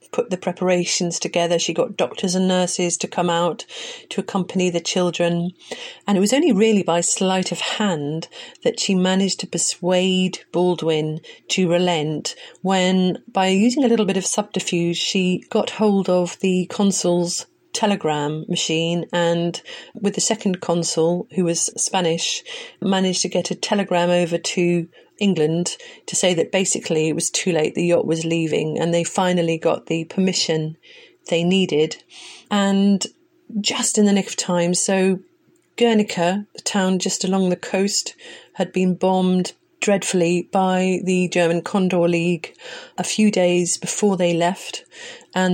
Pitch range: 170-195 Hz